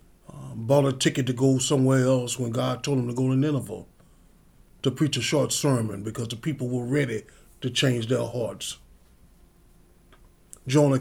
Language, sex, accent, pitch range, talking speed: English, male, American, 115-145 Hz, 170 wpm